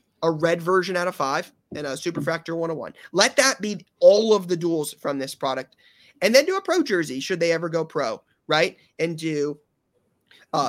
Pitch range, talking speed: 145-190 Hz, 210 wpm